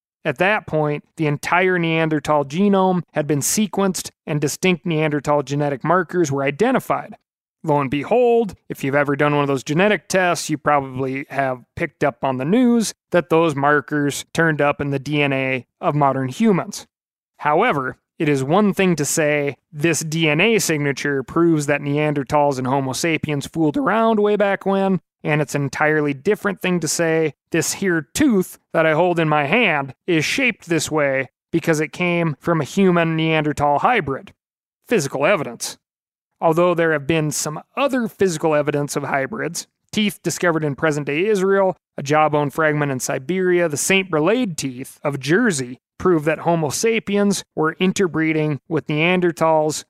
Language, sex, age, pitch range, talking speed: English, male, 30-49, 145-180 Hz, 160 wpm